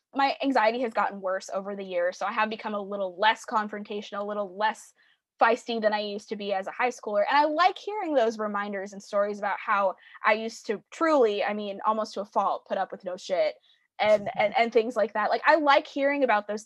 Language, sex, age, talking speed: English, female, 20-39, 240 wpm